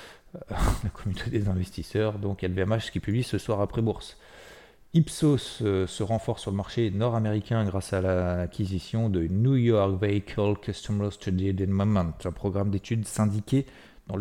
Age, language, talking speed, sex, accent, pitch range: 40-59, French, 145 wpm, male, French, 95-120 Hz